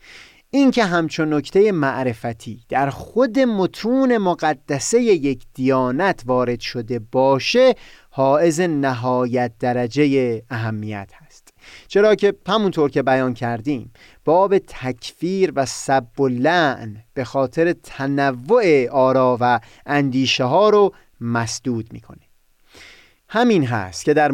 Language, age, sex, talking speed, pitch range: Persian, 30-49, male, 115 wpm, 125-165 Hz